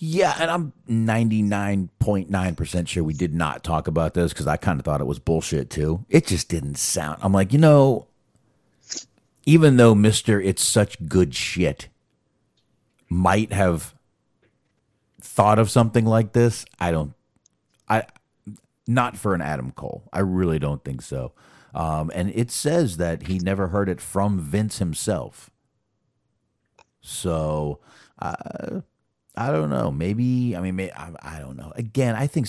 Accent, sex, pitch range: American, male, 85-120 Hz